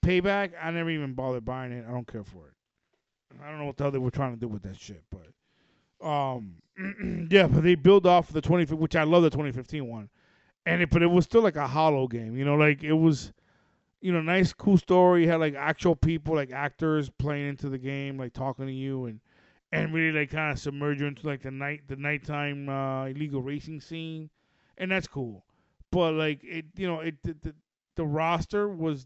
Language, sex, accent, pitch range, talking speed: English, male, American, 130-160 Hz, 225 wpm